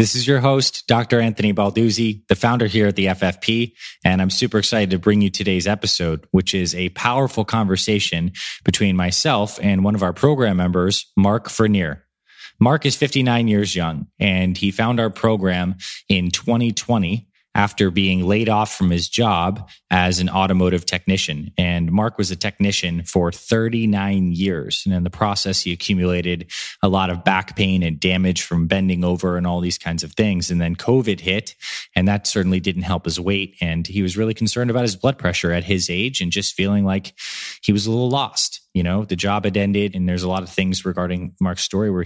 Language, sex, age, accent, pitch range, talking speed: English, male, 20-39, American, 90-105 Hz, 195 wpm